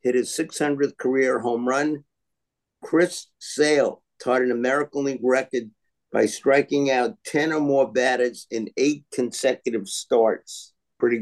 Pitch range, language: 120-140 Hz, English